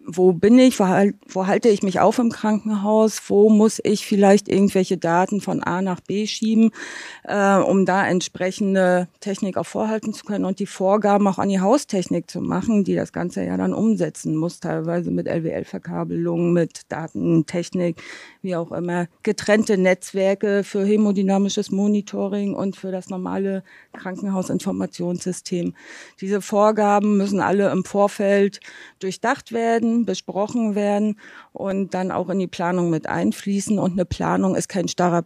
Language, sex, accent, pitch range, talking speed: German, female, German, 175-205 Hz, 150 wpm